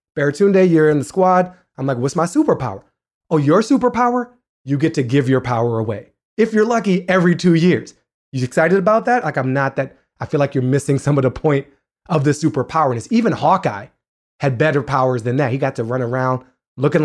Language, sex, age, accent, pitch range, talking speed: English, male, 30-49, American, 130-165 Hz, 210 wpm